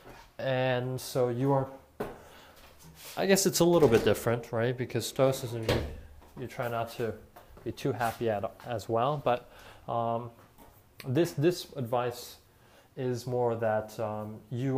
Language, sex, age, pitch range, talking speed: English, male, 20-39, 115-155 Hz, 140 wpm